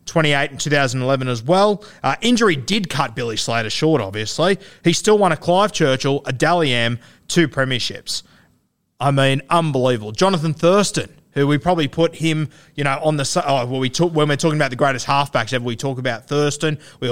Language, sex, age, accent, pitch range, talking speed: English, male, 20-39, Australian, 125-160 Hz, 190 wpm